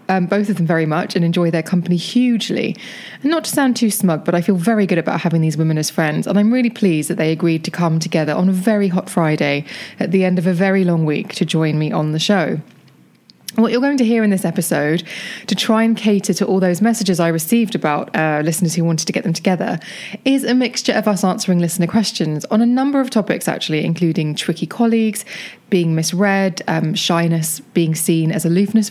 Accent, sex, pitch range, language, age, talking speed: British, female, 170-220 Hz, English, 20-39, 225 wpm